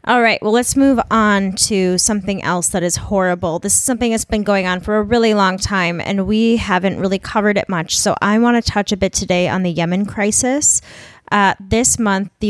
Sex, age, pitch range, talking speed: female, 20-39, 180-215 Hz, 225 wpm